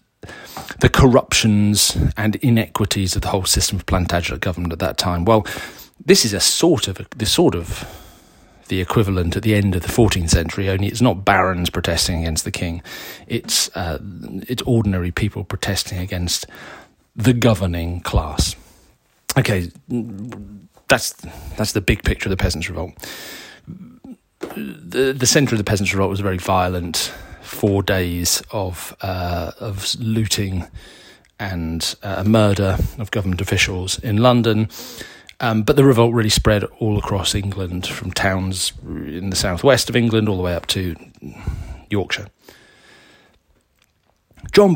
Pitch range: 90-110 Hz